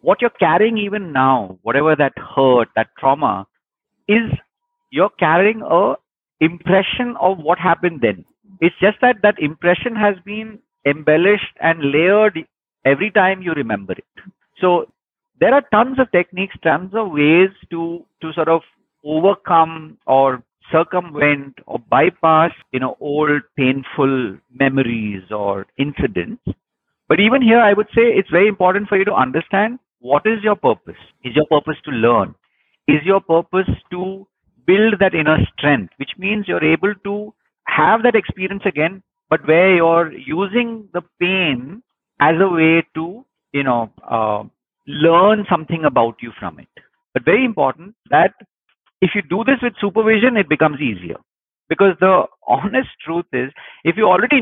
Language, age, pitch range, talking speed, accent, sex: English, 50-69, 150-210 Hz, 150 wpm, Indian, male